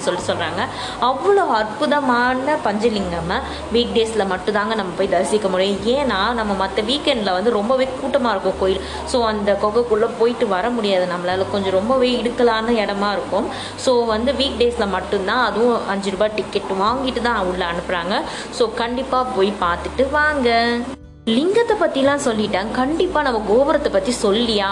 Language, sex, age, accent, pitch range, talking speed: Tamil, female, 20-39, native, 195-255 Hz, 145 wpm